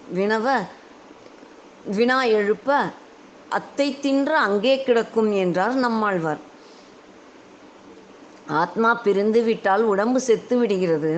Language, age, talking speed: Tamil, 20-39, 80 wpm